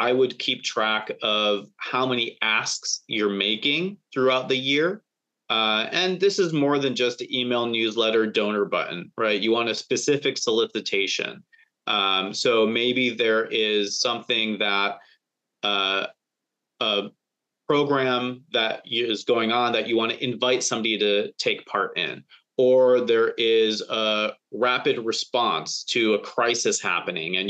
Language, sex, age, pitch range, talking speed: English, male, 30-49, 110-130 Hz, 145 wpm